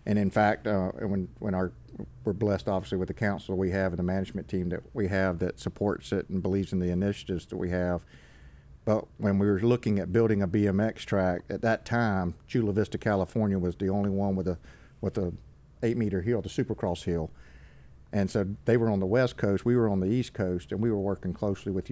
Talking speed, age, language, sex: 225 wpm, 50-69, English, male